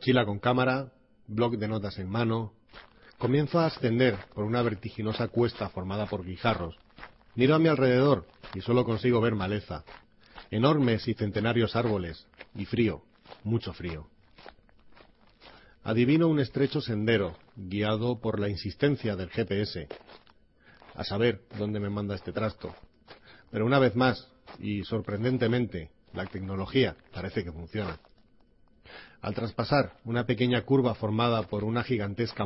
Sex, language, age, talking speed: male, Spanish, 40-59, 135 wpm